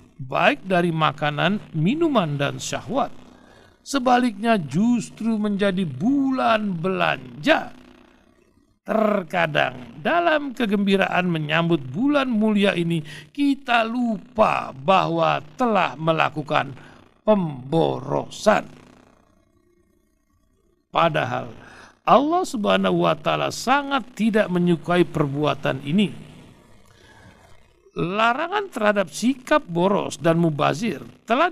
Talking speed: 75 wpm